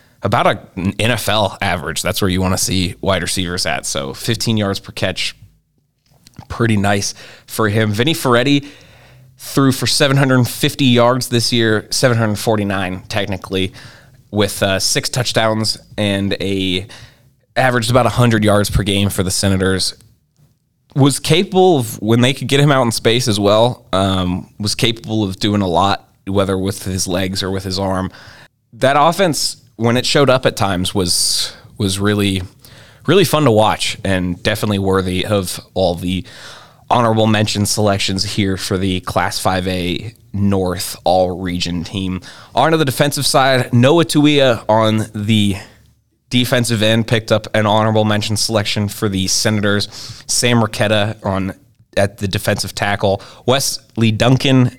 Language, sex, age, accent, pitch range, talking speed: English, male, 20-39, American, 100-125 Hz, 150 wpm